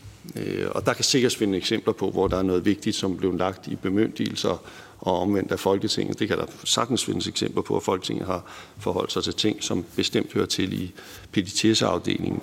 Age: 60-79